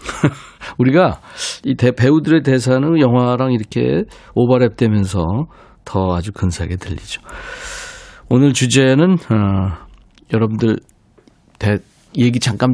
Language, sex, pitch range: Korean, male, 105-140 Hz